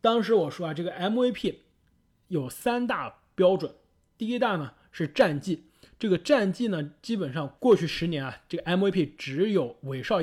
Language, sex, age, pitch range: Chinese, male, 20-39, 145-190 Hz